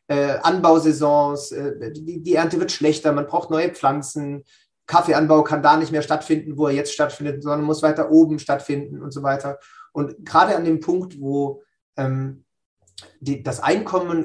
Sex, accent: male, German